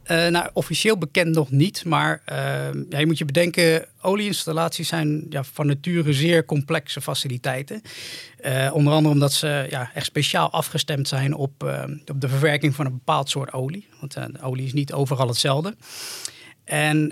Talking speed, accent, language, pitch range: 175 wpm, Dutch, Dutch, 140-165 Hz